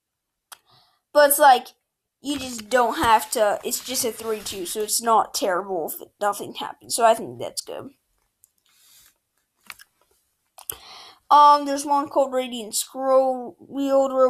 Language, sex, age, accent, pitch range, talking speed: English, female, 20-39, American, 240-345 Hz, 130 wpm